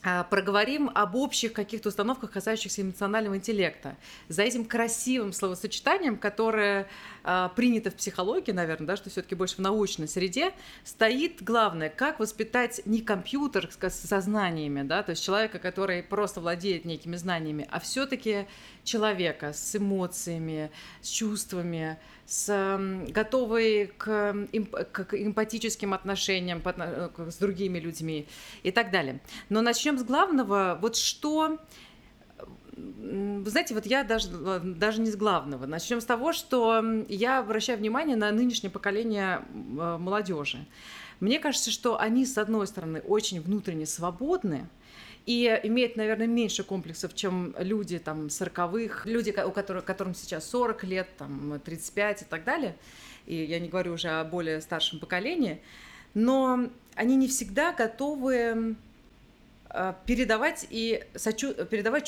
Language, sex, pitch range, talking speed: Russian, female, 185-225 Hz, 125 wpm